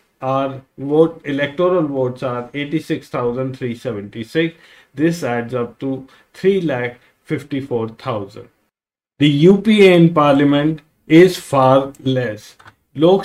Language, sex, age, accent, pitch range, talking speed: English, male, 50-69, Indian, 130-160 Hz, 85 wpm